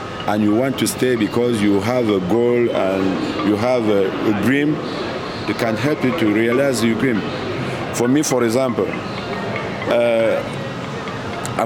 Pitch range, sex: 105-135 Hz, male